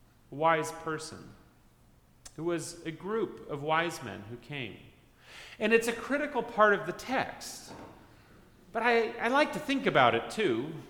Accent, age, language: American, 30-49, English